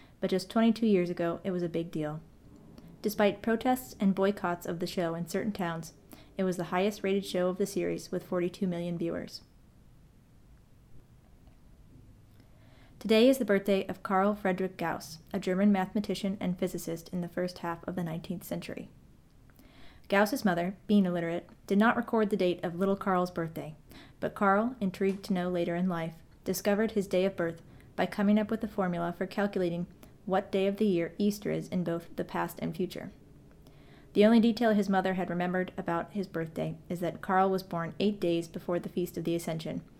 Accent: American